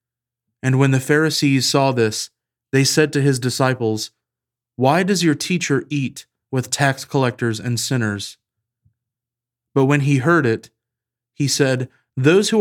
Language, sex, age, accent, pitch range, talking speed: English, male, 30-49, American, 120-135 Hz, 145 wpm